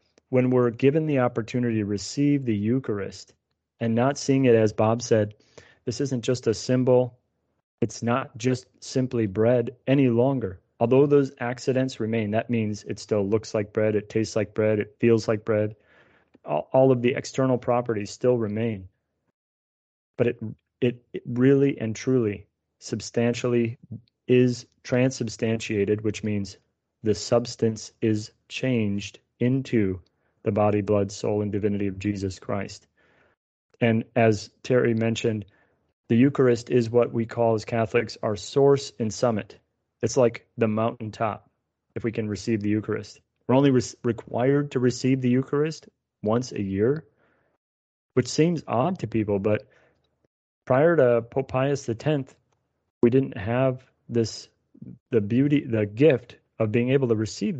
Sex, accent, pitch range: male, American, 105-125 Hz